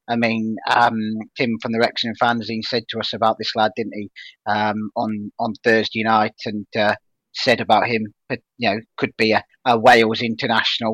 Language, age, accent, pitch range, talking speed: English, 40-59, British, 110-135 Hz, 185 wpm